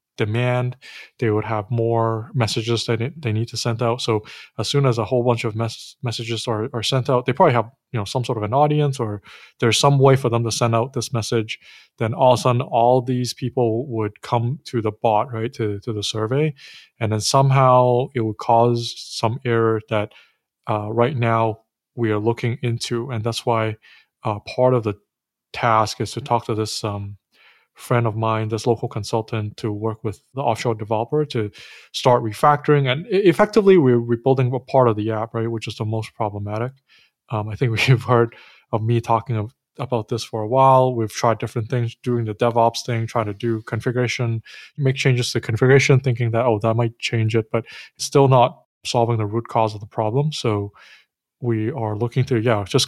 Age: 20-39